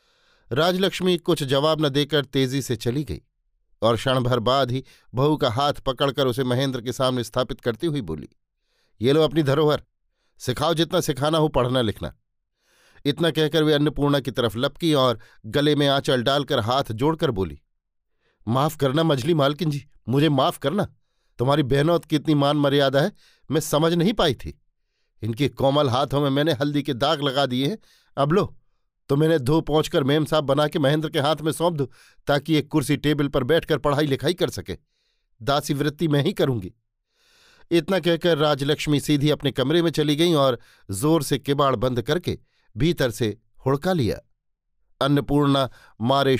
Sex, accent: male, native